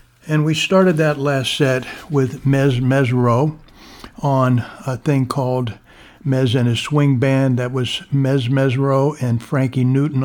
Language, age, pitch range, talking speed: English, 60-79, 120-140 Hz, 145 wpm